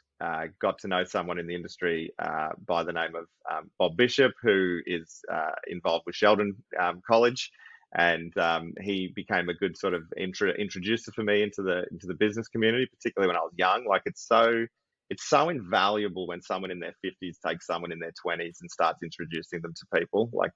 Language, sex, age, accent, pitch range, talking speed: English, male, 30-49, Australian, 85-105 Hz, 200 wpm